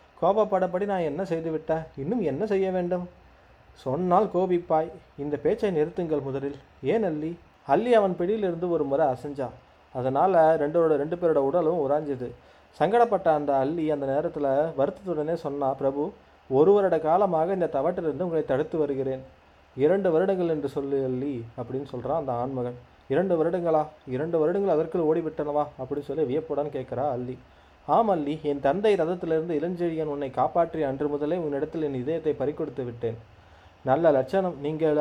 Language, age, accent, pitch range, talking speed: Tamil, 30-49, native, 140-175 Hz, 140 wpm